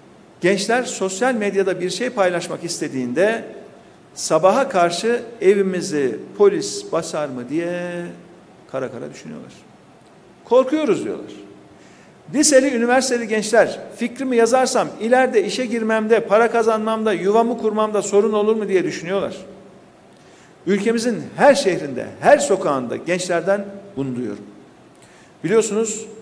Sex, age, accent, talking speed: male, 50-69, native, 105 wpm